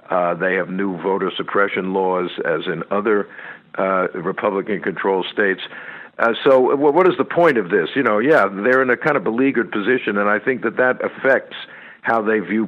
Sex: male